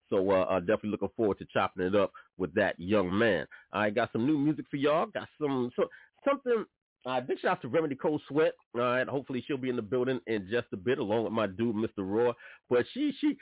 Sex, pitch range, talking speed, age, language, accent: male, 105-145 Hz, 240 wpm, 40-59, English, American